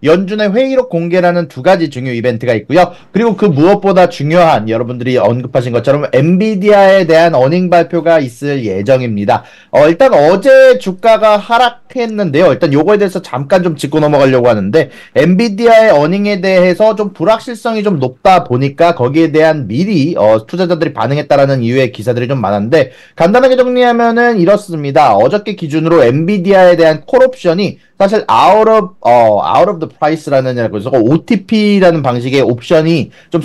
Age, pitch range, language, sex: 30-49, 140-205 Hz, Korean, male